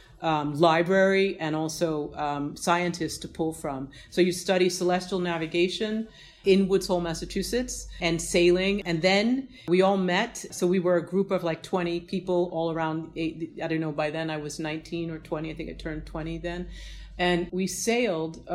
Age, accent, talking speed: 40-59, American, 180 wpm